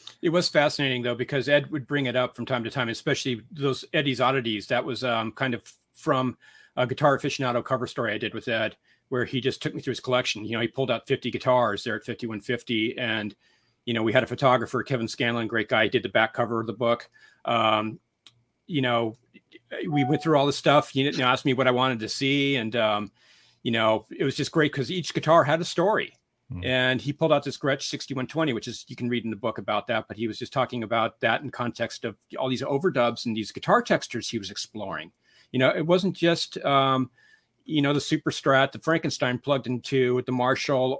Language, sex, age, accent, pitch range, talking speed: English, male, 40-59, American, 120-145 Hz, 225 wpm